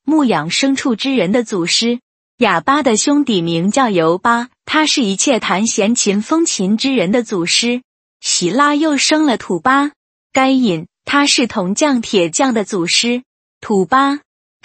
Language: Chinese